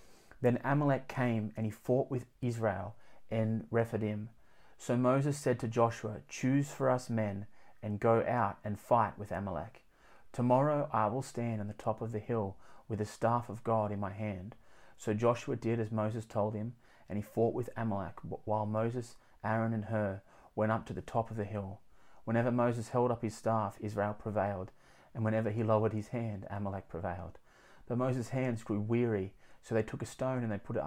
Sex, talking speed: male, 190 wpm